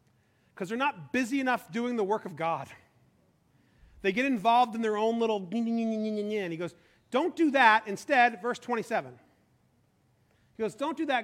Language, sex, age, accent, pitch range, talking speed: English, male, 40-59, American, 225-320 Hz, 160 wpm